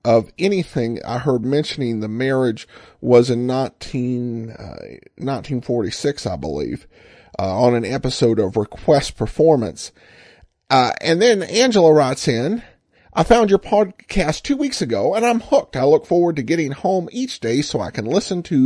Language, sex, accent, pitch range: English, male, American, 125-185 Hz